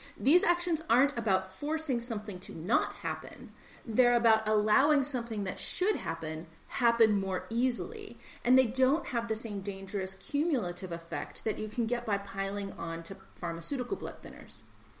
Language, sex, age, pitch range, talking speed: English, female, 30-49, 205-295 Hz, 155 wpm